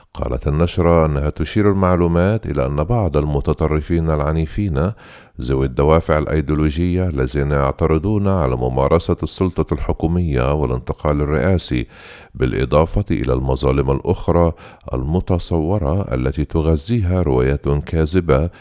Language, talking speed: Arabic, 95 wpm